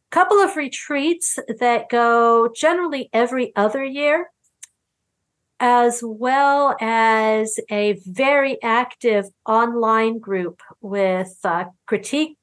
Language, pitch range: English, 215-265 Hz